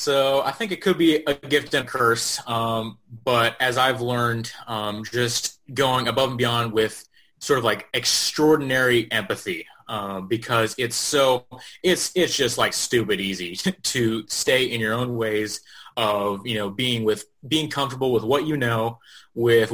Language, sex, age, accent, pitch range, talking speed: English, male, 30-49, American, 110-135 Hz, 170 wpm